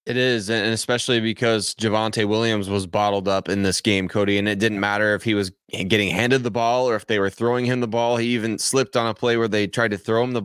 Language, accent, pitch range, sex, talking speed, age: English, American, 105-120 Hz, male, 265 wpm, 20-39